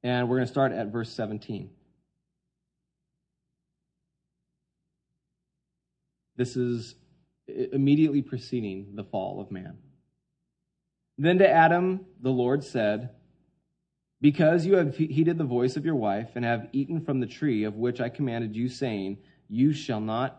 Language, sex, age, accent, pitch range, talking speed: English, male, 30-49, American, 115-145 Hz, 135 wpm